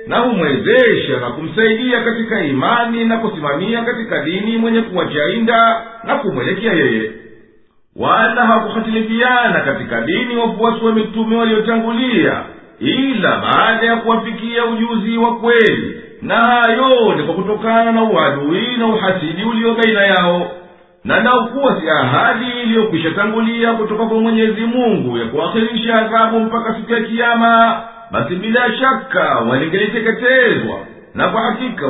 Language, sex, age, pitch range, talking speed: Swahili, male, 50-69, 220-235 Hz, 125 wpm